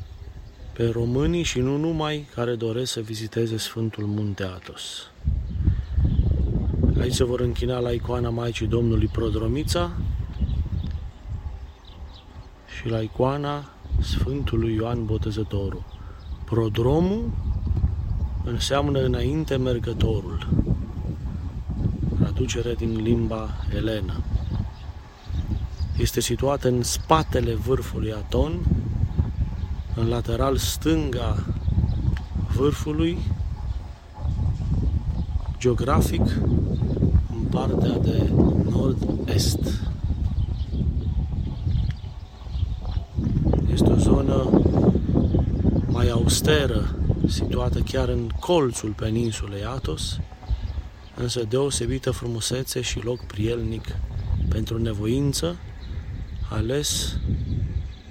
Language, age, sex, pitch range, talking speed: Romanian, 30-49, male, 85-115 Hz, 70 wpm